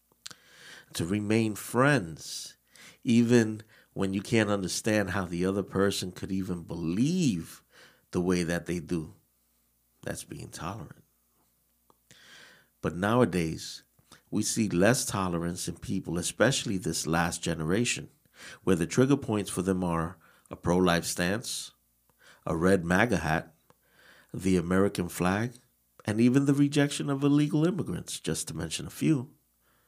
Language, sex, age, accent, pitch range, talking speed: English, male, 50-69, American, 85-125 Hz, 130 wpm